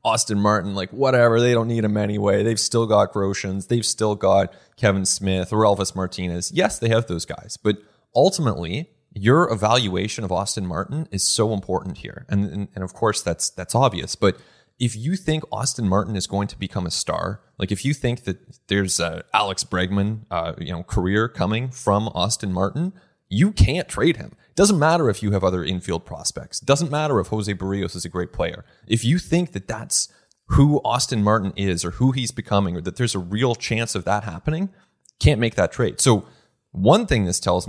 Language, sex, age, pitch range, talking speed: English, male, 20-39, 95-120 Hz, 200 wpm